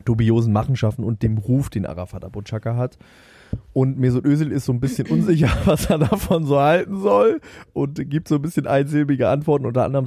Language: German